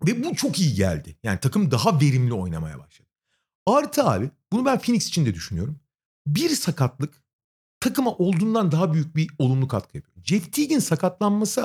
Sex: male